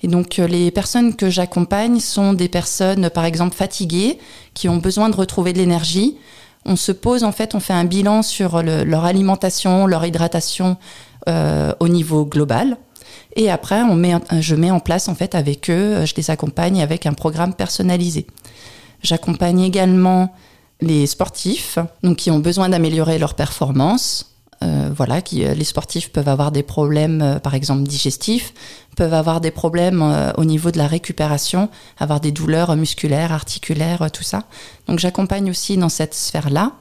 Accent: French